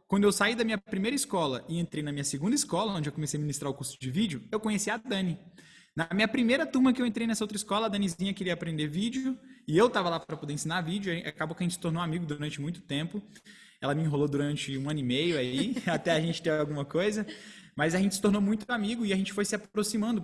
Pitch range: 150-205 Hz